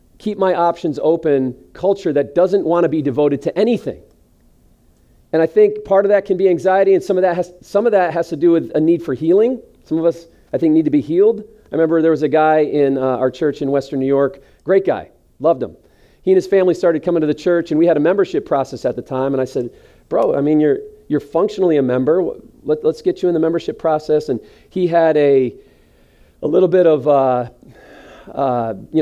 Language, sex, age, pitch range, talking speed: English, male, 40-59, 135-175 Hz, 225 wpm